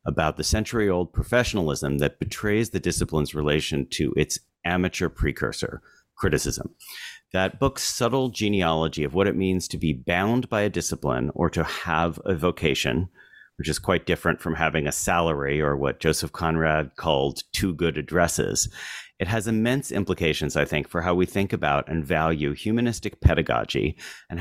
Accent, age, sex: American, 40-59, male